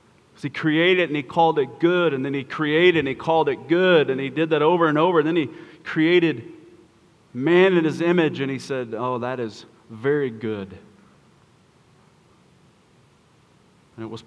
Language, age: English, 30-49